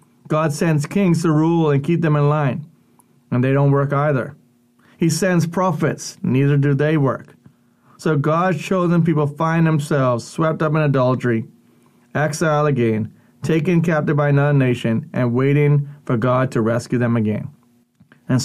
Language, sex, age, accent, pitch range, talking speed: English, male, 30-49, American, 120-150 Hz, 155 wpm